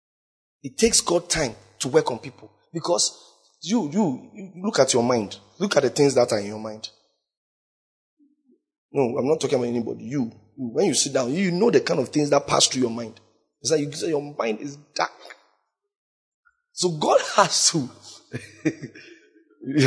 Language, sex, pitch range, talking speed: English, male, 135-200 Hz, 180 wpm